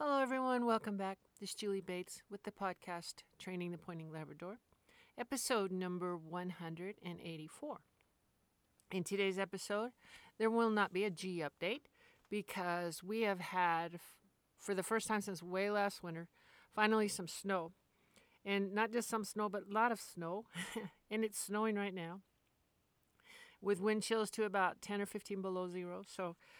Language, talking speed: English, 155 wpm